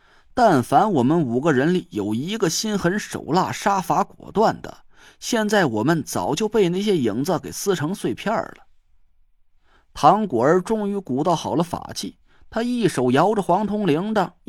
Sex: male